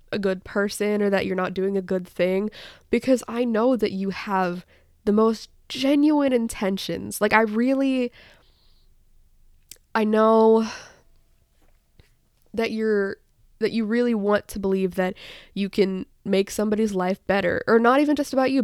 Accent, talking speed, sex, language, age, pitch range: American, 150 wpm, female, English, 20-39, 195-250 Hz